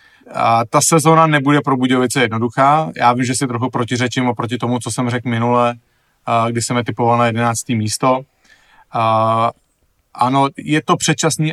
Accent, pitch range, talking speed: Czech, 120-130 Hz, 160 wpm